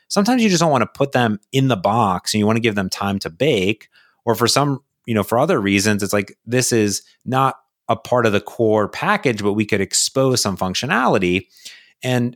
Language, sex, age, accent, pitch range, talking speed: English, male, 30-49, American, 100-130 Hz, 225 wpm